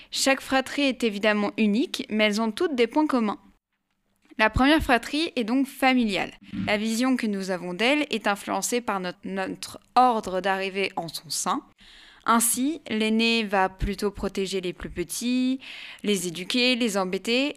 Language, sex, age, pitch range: French, female, 20-39, 205-255 Hz